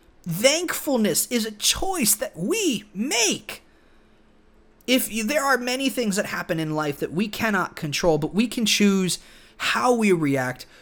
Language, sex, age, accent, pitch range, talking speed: English, male, 30-49, American, 160-230 Hz, 155 wpm